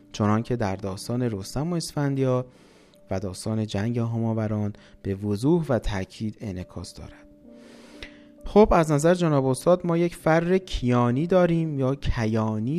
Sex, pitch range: male, 110-170 Hz